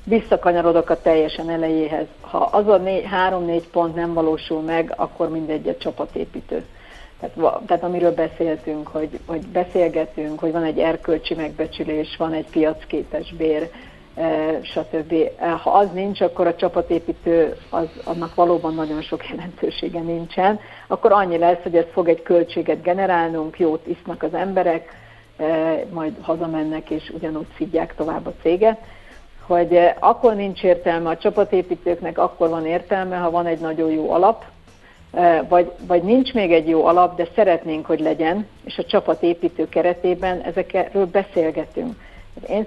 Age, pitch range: 60-79, 160-180 Hz